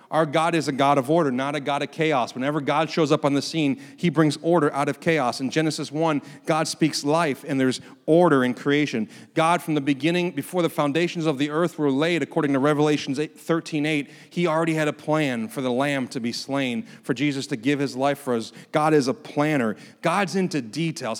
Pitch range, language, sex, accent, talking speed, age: 140-170 Hz, English, male, American, 225 wpm, 40-59